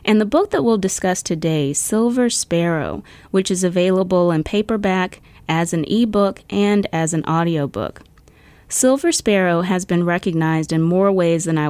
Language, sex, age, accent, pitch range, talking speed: English, female, 20-39, American, 160-205 Hz, 165 wpm